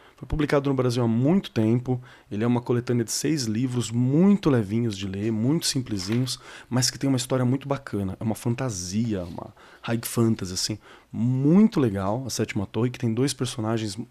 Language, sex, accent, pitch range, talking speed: Portuguese, male, Brazilian, 110-140 Hz, 185 wpm